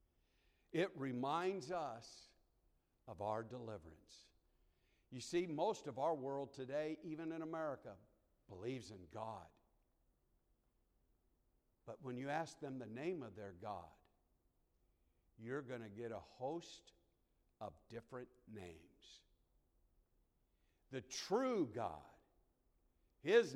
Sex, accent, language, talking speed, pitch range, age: male, American, English, 105 wpm, 110-165 Hz, 60-79